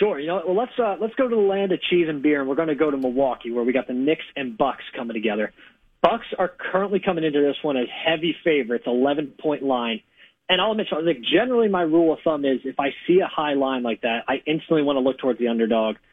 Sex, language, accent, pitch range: male, English, American, 130-175 Hz